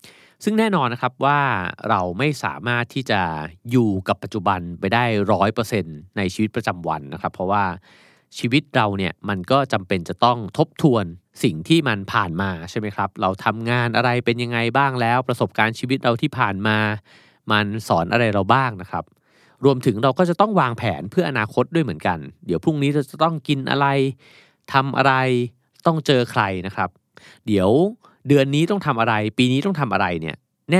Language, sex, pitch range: Thai, male, 100-135 Hz